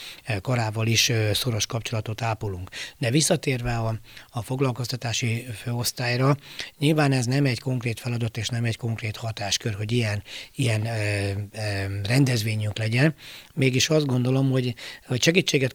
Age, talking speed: 60-79, 135 wpm